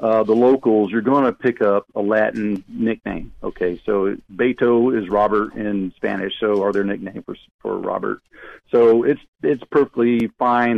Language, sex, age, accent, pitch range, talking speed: English, male, 50-69, American, 105-130 Hz, 165 wpm